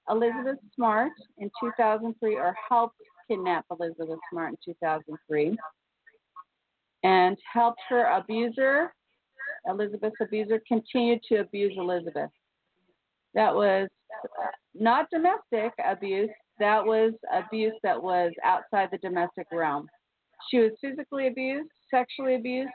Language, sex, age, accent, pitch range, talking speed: English, female, 40-59, American, 190-245 Hz, 110 wpm